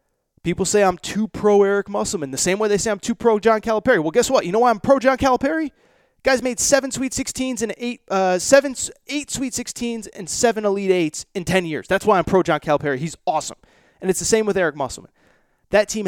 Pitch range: 155-220 Hz